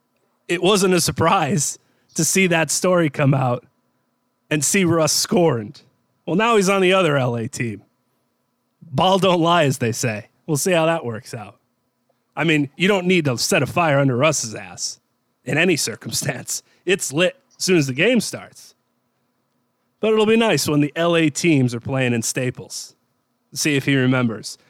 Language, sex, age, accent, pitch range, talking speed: English, male, 30-49, American, 125-180 Hz, 175 wpm